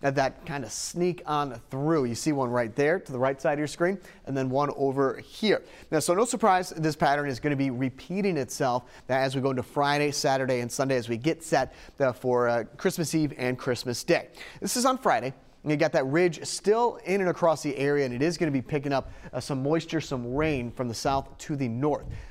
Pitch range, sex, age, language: 135-170 Hz, male, 30-49, English